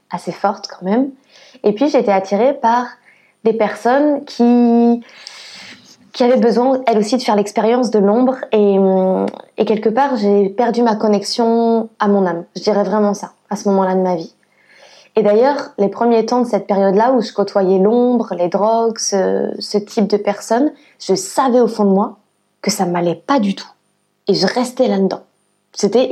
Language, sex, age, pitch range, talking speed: French, female, 20-39, 195-245 Hz, 185 wpm